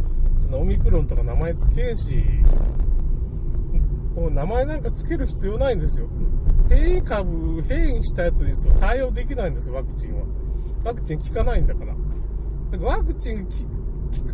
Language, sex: Japanese, male